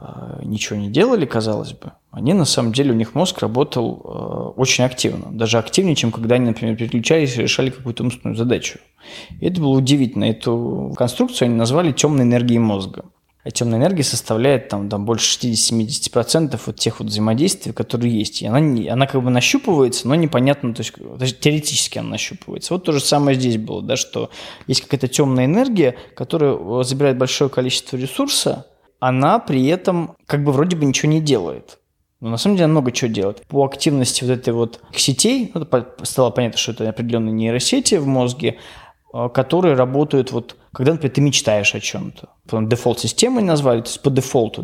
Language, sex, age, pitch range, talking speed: Russian, male, 20-39, 115-145 Hz, 175 wpm